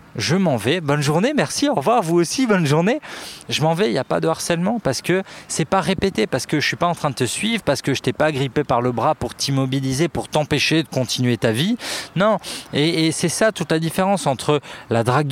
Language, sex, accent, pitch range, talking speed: French, male, French, 135-190 Hz, 255 wpm